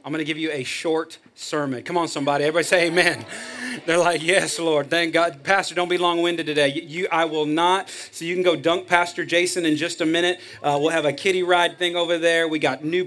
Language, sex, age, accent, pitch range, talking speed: English, male, 30-49, American, 155-180 Hz, 235 wpm